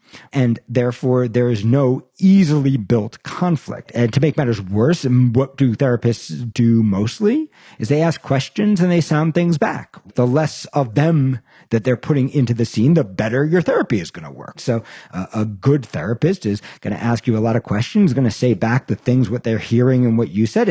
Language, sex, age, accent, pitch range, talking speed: English, male, 50-69, American, 115-155 Hz, 210 wpm